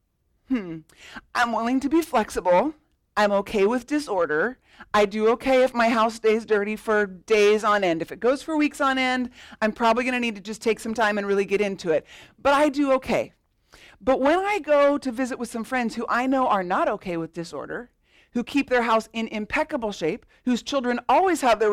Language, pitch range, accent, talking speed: English, 210-280 Hz, American, 215 wpm